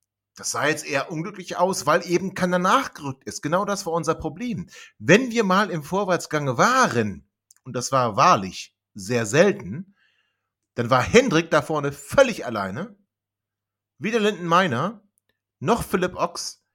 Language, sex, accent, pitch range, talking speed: German, male, German, 130-185 Hz, 145 wpm